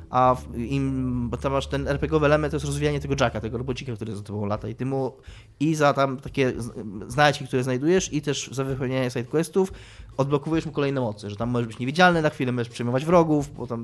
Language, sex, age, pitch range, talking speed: Polish, male, 20-39, 125-175 Hz, 225 wpm